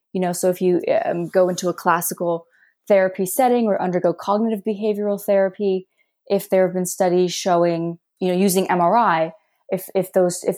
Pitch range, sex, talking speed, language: 170-200 Hz, female, 170 wpm, English